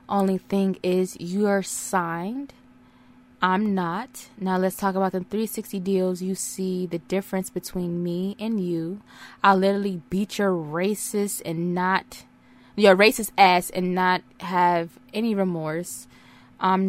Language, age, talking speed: English, 20-39, 140 wpm